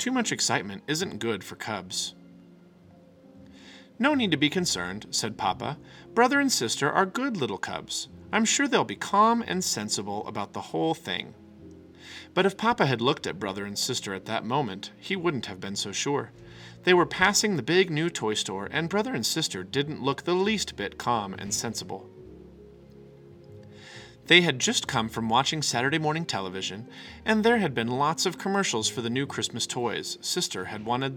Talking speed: 180 wpm